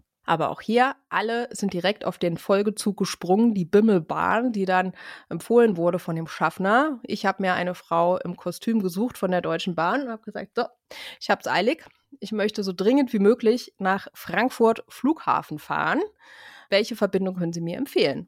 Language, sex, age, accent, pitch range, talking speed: German, female, 30-49, German, 175-220 Hz, 180 wpm